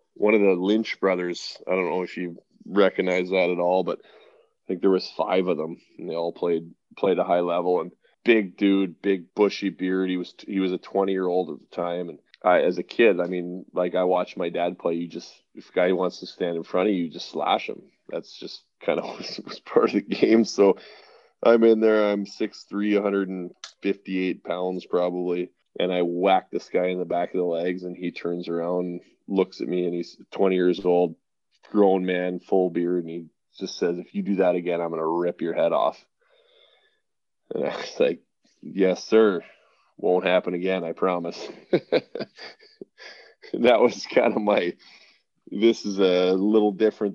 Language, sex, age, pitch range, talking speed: English, male, 20-39, 90-100 Hz, 205 wpm